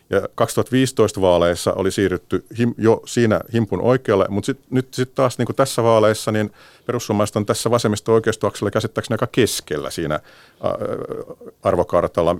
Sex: male